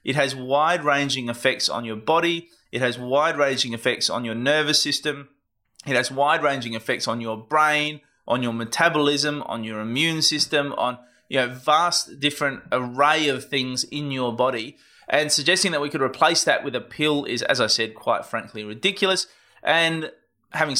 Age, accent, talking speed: 20-39, Australian, 180 wpm